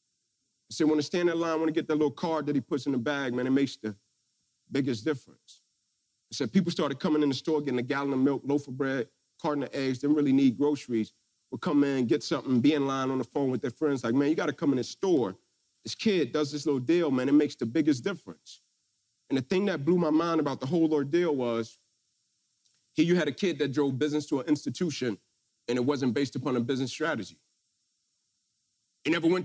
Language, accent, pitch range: English, American, 145-230 Hz